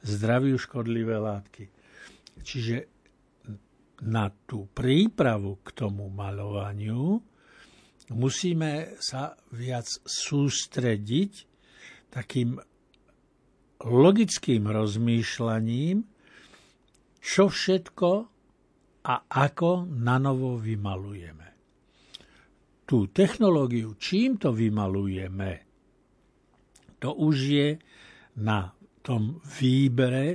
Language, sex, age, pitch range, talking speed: Slovak, male, 60-79, 110-140 Hz, 70 wpm